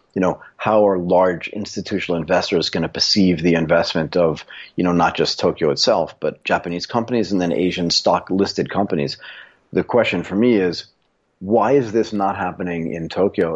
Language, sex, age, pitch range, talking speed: English, male, 30-49, 85-105 Hz, 175 wpm